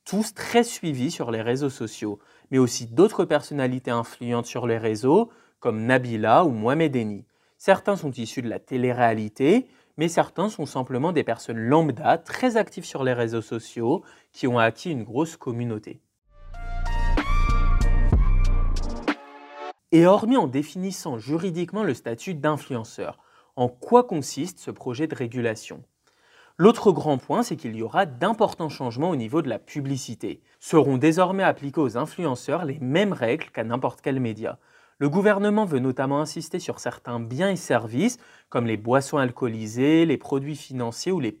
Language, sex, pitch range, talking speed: French, male, 120-165 Hz, 150 wpm